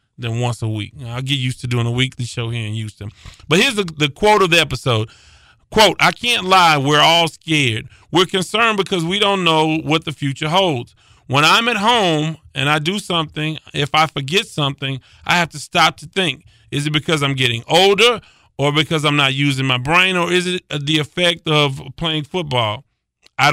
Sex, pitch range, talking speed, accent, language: male, 130-165 Hz, 205 wpm, American, English